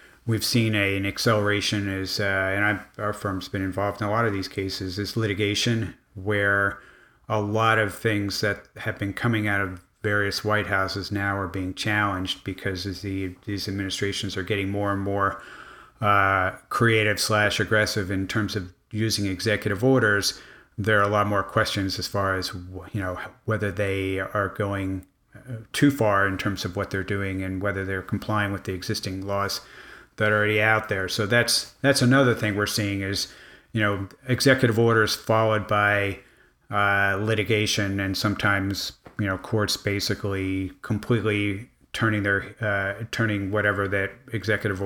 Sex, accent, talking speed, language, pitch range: male, American, 165 wpm, English, 100-110 Hz